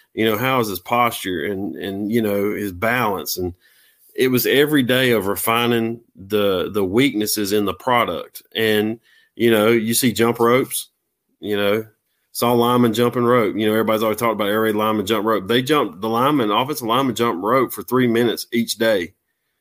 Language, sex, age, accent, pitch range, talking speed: English, male, 30-49, American, 110-125 Hz, 185 wpm